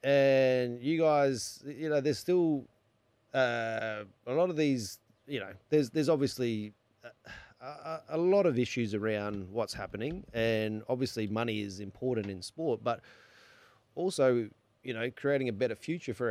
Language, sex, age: English, male, 30-49